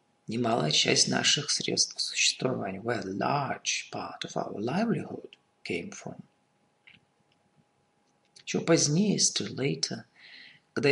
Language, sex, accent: Russian, male, native